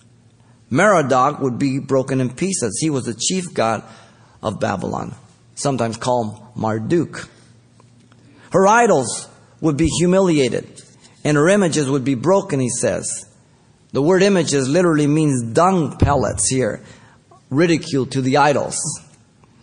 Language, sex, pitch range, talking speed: English, male, 120-155 Hz, 125 wpm